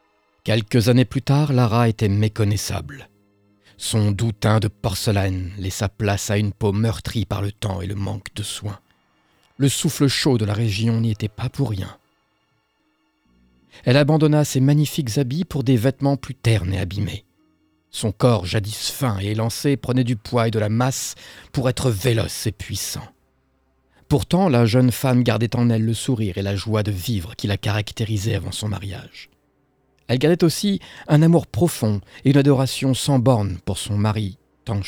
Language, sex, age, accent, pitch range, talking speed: French, male, 50-69, French, 100-130 Hz, 175 wpm